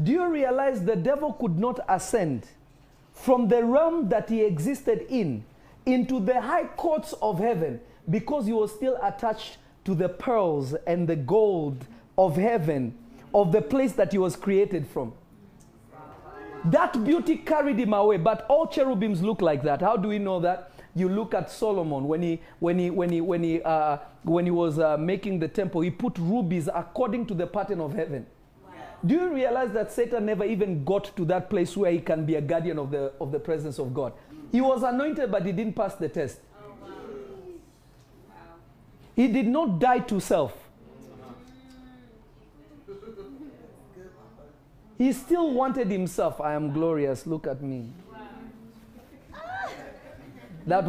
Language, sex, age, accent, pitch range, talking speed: English, male, 40-59, South African, 155-235 Hz, 150 wpm